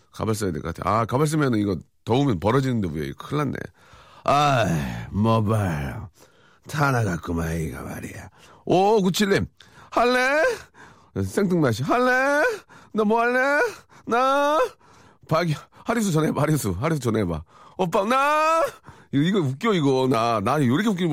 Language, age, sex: Korean, 40-59, male